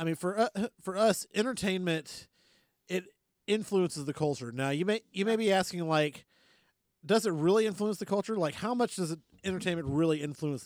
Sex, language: male, English